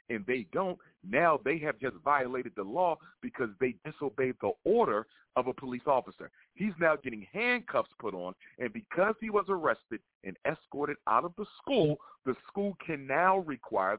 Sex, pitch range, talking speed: male, 120-180 Hz, 175 wpm